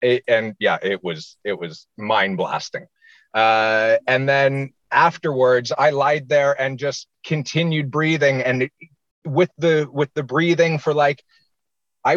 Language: English